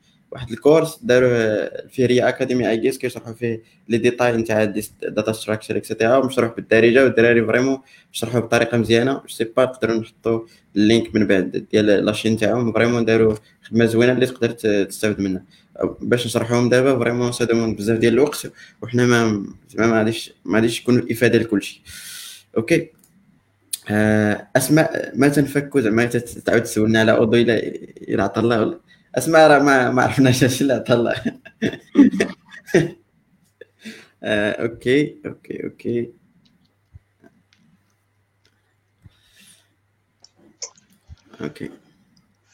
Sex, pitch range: male, 110-135 Hz